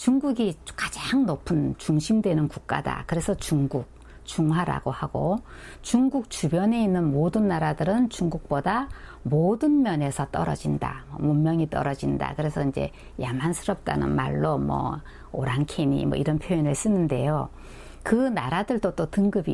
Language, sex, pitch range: Korean, female, 140-195 Hz